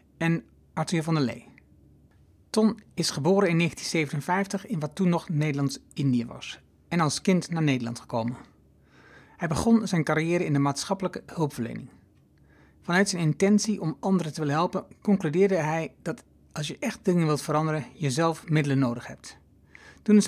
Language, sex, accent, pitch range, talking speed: Dutch, male, Dutch, 140-185 Hz, 155 wpm